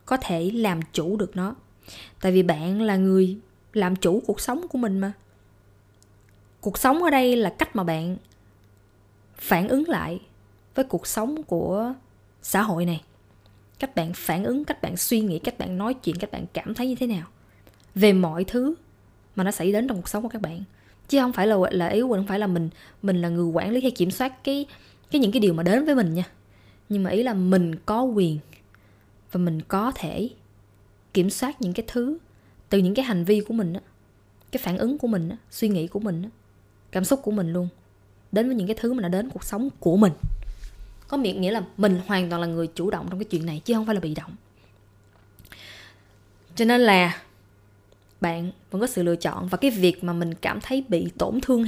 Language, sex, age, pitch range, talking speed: Vietnamese, female, 20-39, 135-220 Hz, 220 wpm